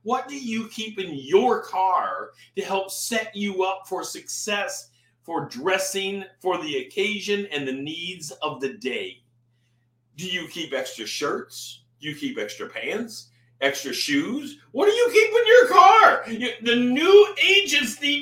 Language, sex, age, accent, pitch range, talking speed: English, male, 50-69, American, 170-255 Hz, 160 wpm